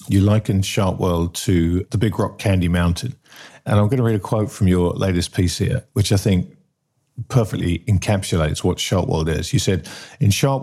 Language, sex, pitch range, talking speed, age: English, male, 90-115 Hz, 200 wpm, 50-69